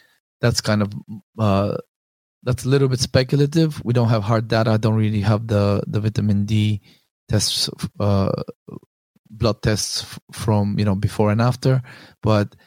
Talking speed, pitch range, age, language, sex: 160 wpm, 110-130 Hz, 20-39, English, male